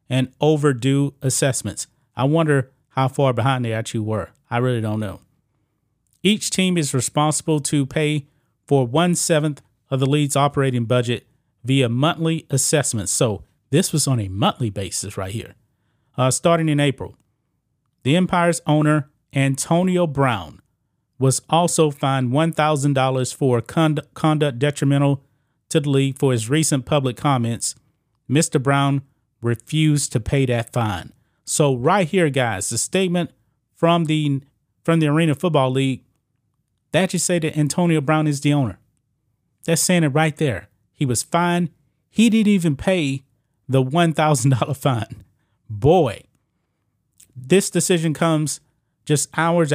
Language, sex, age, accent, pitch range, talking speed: English, male, 30-49, American, 125-155 Hz, 140 wpm